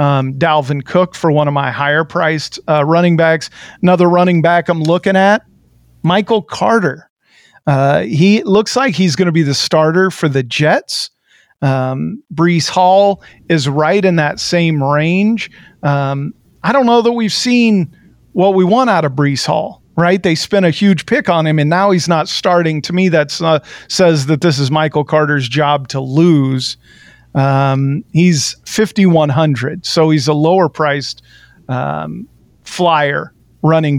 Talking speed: 165 wpm